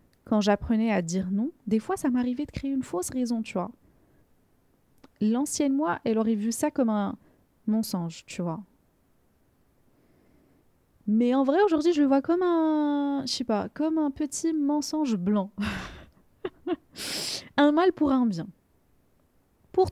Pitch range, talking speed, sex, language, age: 205-280 Hz, 150 wpm, female, French, 20-39